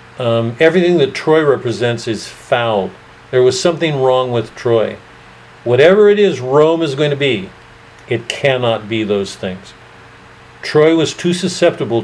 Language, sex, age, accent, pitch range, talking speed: English, male, 50-69, American, 115-140 Hz, 150 wpm